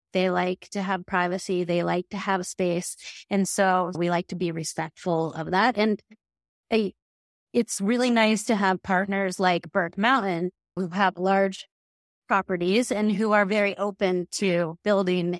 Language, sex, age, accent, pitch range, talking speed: English, female, 30-49, American, 175-200 Hz, 155 wpm